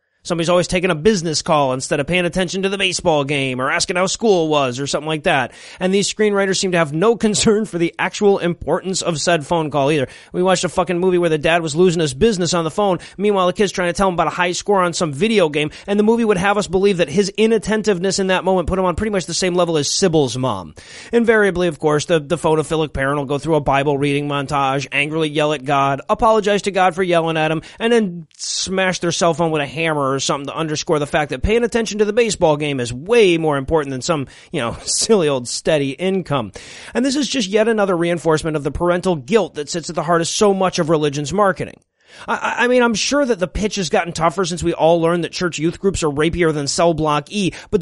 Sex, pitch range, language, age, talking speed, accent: male, 155-200 Hz, English, 30-49, 250 wpm, American